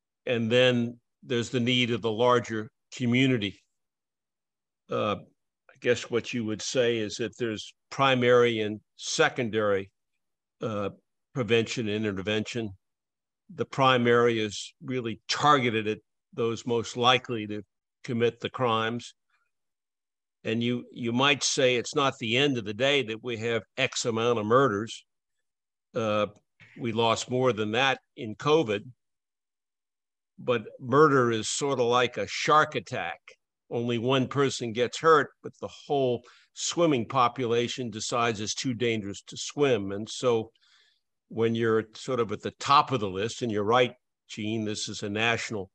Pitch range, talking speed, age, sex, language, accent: 110-125 Hz, 145 wpm, 60-79, male, English, American